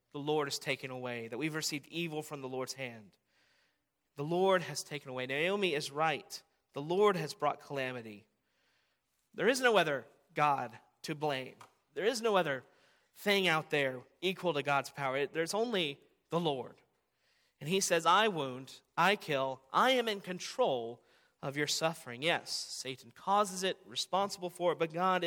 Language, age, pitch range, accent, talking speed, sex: English, 30-49, 140-190 Hz, American, 170 wpm, male